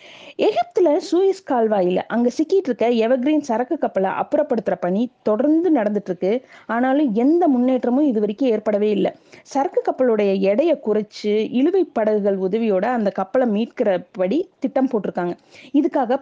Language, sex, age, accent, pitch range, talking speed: Tamil, female, 30-49, native, 210-290 Hz, 120 wpm